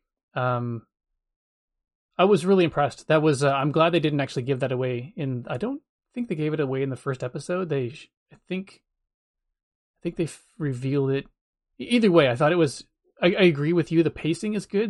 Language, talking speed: English, 210 wpm